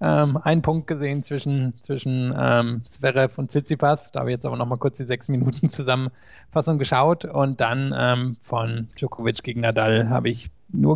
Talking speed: 175 wpm